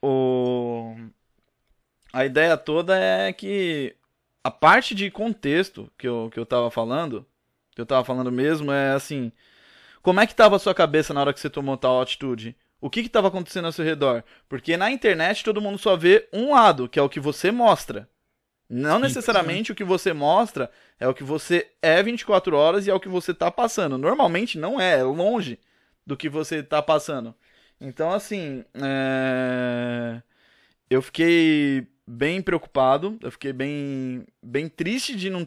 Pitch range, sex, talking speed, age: 140-200 Hz, male, 175 wpm, 20-39